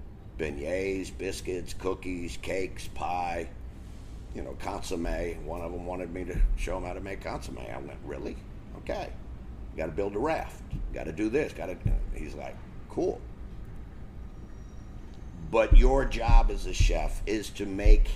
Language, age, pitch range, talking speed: English, 50-69, 80-105 Hz, 155 wpm